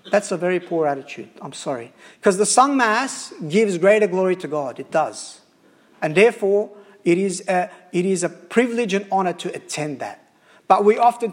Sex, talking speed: male, 185 wpm